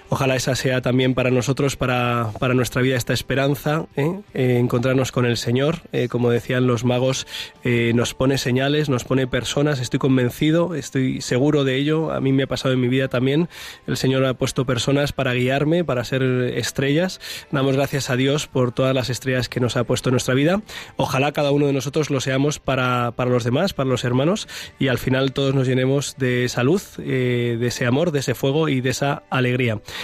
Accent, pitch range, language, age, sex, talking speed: Spanish, 125-145 Hz, Spanish, 20-39, male, 210 wpm